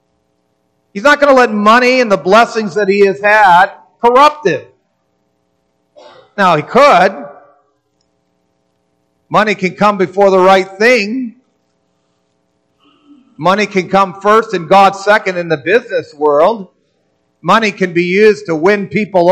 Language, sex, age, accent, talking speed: English, male, 50-69, American, 135 wpm